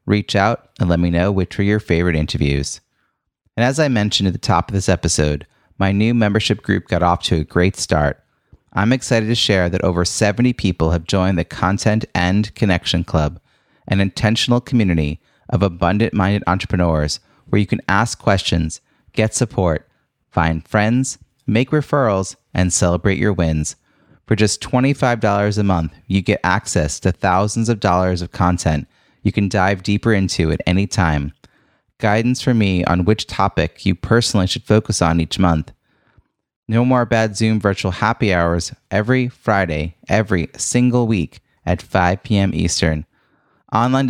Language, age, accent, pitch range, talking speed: English, 30-49, American, 90-110 Hz, 160 wpm